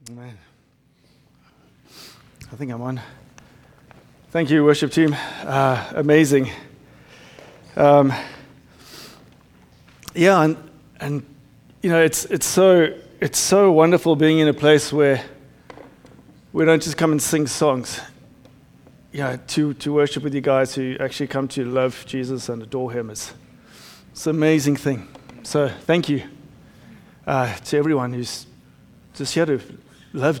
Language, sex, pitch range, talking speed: English, male, 130-155 Hz, 130 wpm